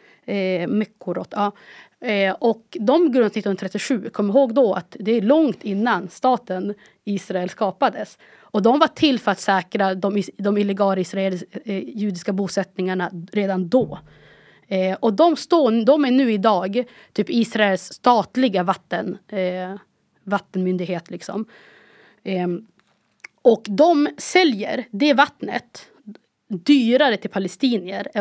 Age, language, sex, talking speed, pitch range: 30-49, Swedish, female, 125 wpm, 190-240 Hz